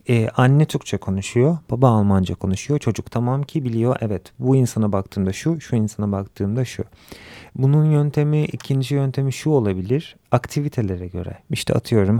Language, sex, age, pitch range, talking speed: Turkish, male, 40-59, 105-135 Hz, 150 wpm